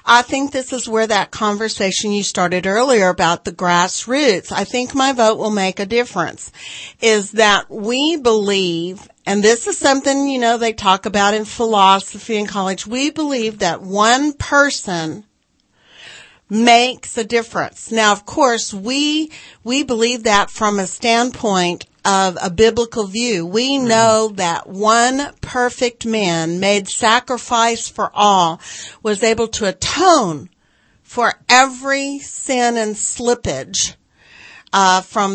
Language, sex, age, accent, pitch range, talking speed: English, female, 50-69, American, 195-245 Hz, 140 wpm